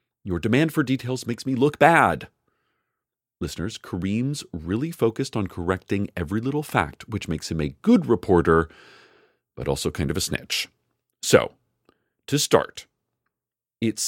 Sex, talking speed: male, 140 wpm